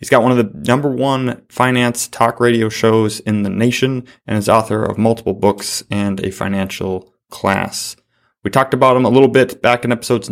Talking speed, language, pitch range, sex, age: 200 wpm, English, 105-120 Hz, male, 20-39